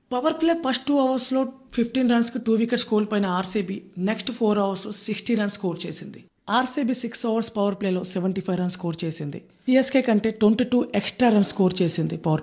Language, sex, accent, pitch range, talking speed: Telugu, female, native, 180-225 Hz, 190 wpm